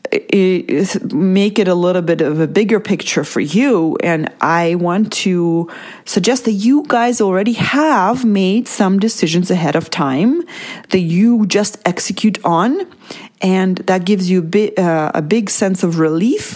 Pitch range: 170-225 Hz